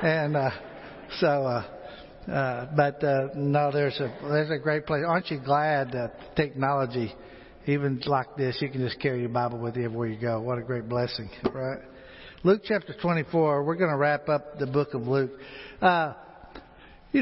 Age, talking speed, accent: 60-79, 180 wpm, American